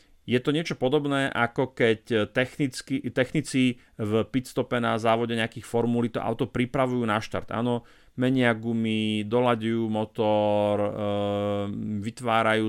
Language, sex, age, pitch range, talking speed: Slovak, male, 40-59, 110-125 Hz, 120 wpm